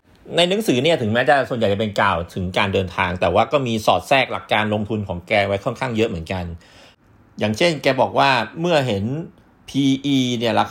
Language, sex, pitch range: Thai, male, 105-140 Hz